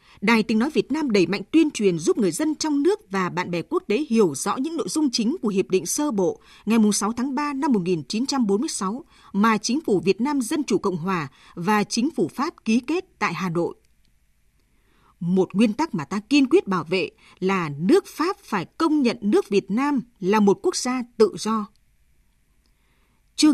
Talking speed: 200 wpm